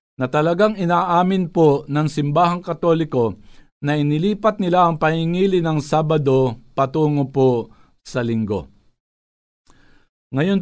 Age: 50-69